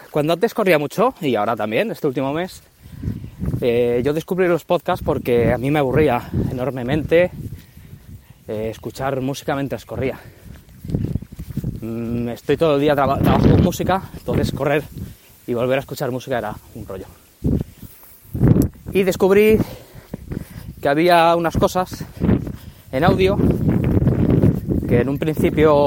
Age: 20-39